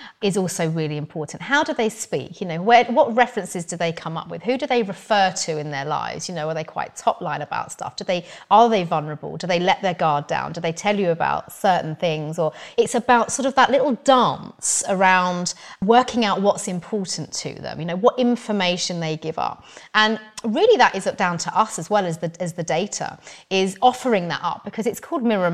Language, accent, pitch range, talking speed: English, British, 165-220 Hz, 230 wpm